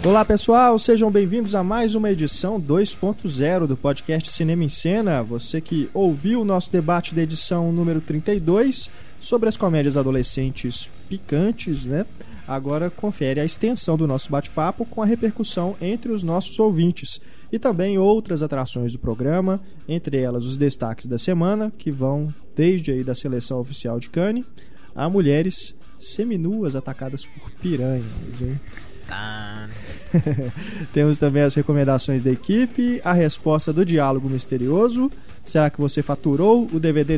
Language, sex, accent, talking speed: Portuguese, male, Brazilian, 145 wpm